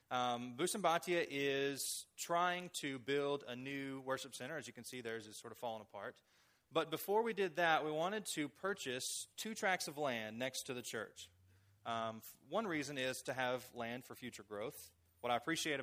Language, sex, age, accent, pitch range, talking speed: English, male, 20-39, American, 115-150 Hz, 185 wpm